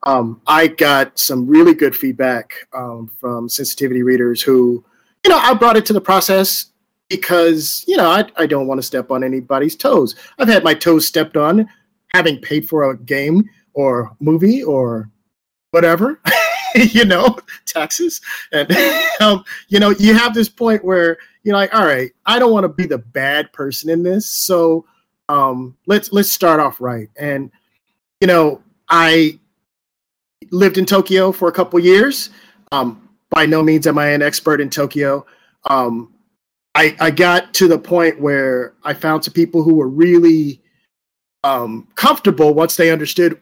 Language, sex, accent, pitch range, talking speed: English, male, American, 140-190 Hz, 165 wpm